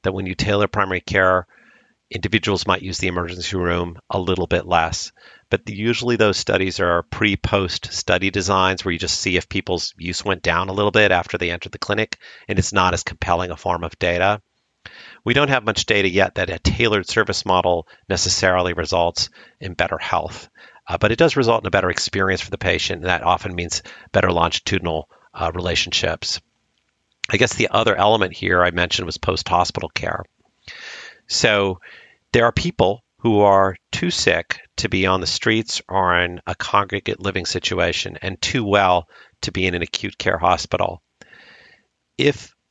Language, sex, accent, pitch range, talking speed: English, male, American, 90-105 Hz, 180 wpm